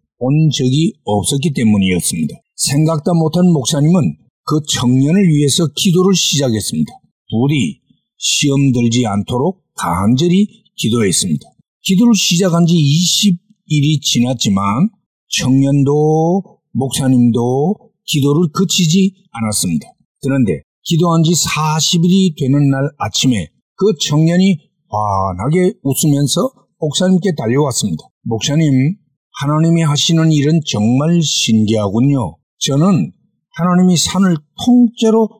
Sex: male